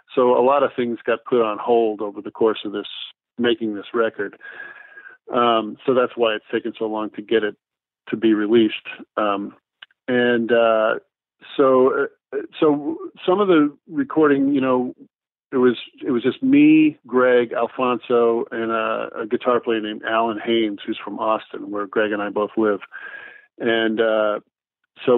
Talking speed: 165 wpm